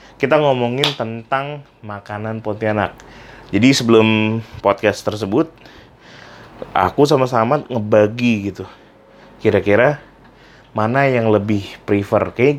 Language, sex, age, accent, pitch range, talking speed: Indonesian, male, 20-39, native, 110-150 Hz, 90 wpm